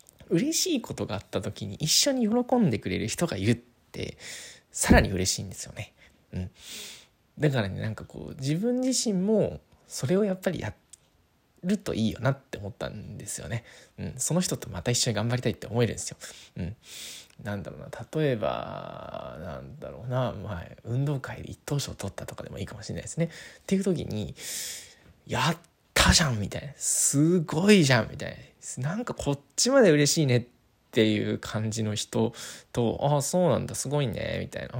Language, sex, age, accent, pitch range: Japanese, male, 20-39, native, 105-145 Hz